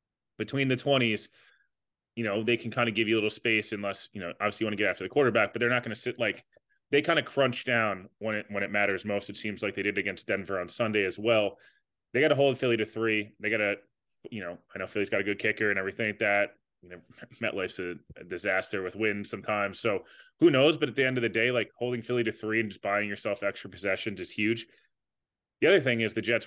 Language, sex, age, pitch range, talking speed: English, male, 20-39, 105-125 Hz, 265 wpm